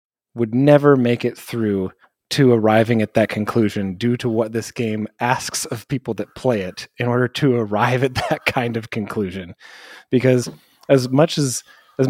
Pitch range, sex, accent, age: 110-135 Hz, male, American, 30-49